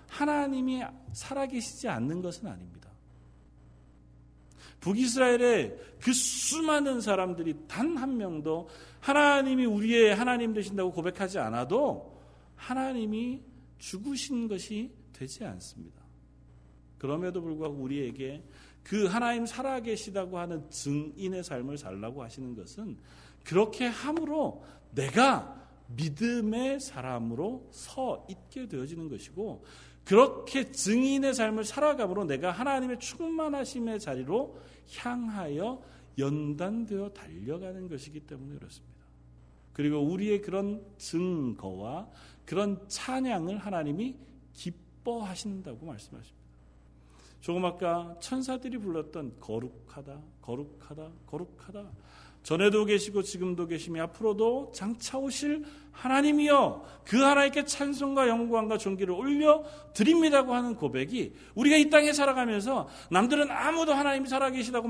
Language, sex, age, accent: Korean, male, 40-59, native